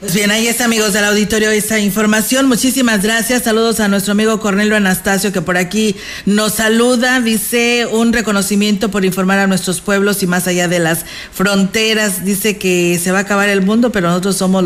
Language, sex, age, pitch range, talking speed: Spanish, female, 40-59, 195-230 Hz, 190 wpm